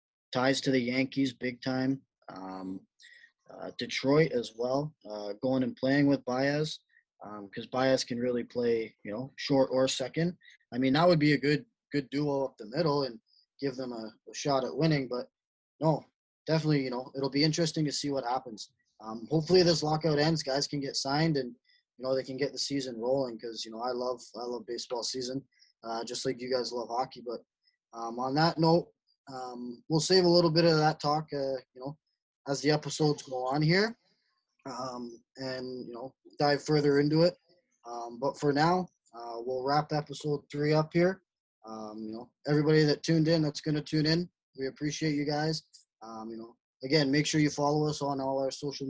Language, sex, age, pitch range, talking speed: English, male, 20-39, 130-155 Hz, 200 wpm